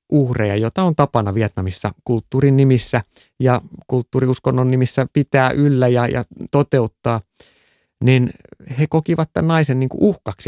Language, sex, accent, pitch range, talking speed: Finnish, male, native, 110-150 Hz, 125 wpm